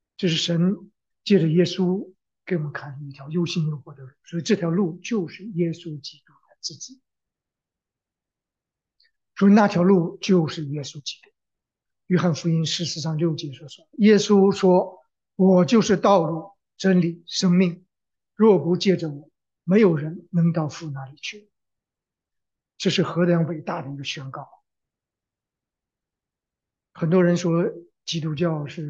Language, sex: English, male